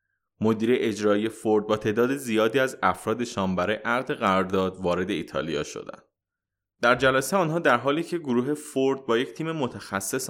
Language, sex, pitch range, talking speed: Persian, male, 105-140 Hz, 150 wpm